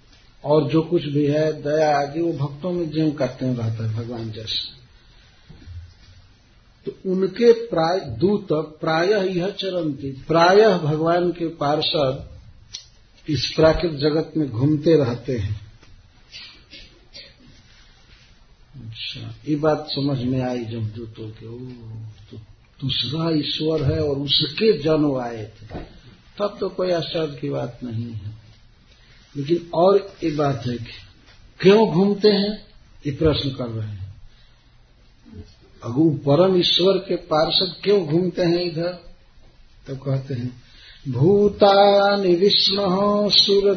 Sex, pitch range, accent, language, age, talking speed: male, 120-180 Hz, native, Hindi, 50-69, 125 wpm